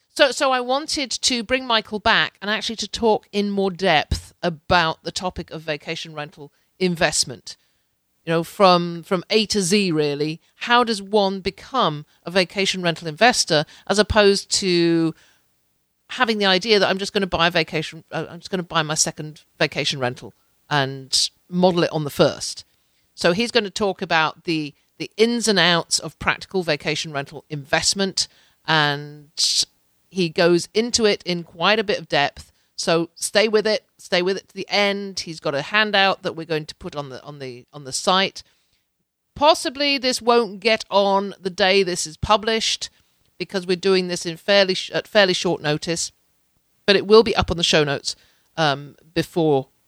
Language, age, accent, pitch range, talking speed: English, 50-69, British, 155-205 Hz, 180 wpm